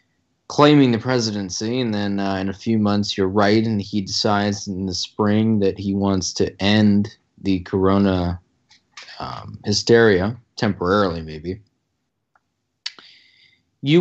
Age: 20-39